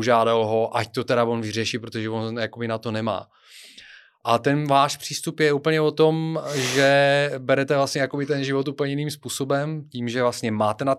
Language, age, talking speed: Czech, 30-49, 190 wpm